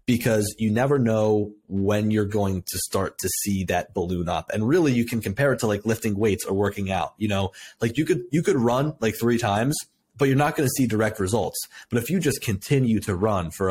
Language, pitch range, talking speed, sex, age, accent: English, 105-135 Hz, 235 wpm, male, 30-49, American